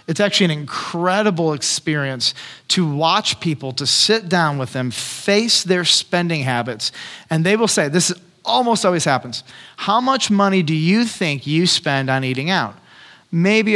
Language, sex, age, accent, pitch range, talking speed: English, male, 30-49, American, 140-180 Hz, 160 wpm